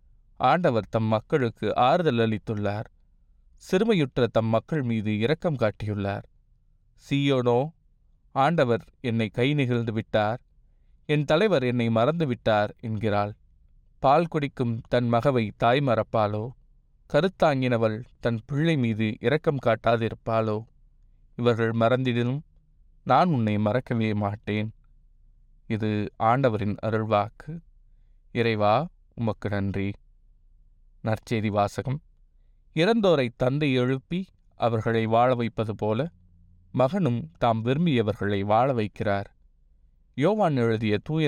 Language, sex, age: Tamil, male, 20-39